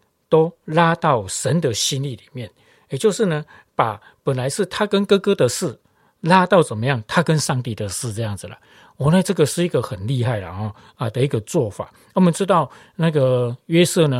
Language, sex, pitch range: Chinese, male, 125-175 Hz